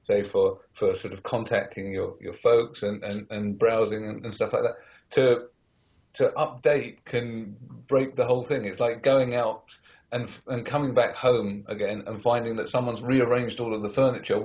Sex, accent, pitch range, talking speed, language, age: male, British, 105-165 Hz, 185 wpm, English, 40-59